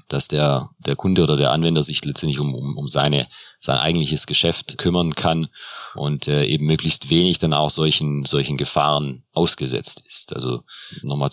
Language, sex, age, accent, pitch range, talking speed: German, male, 40-59, German, 75-80 Hz, 170 wpm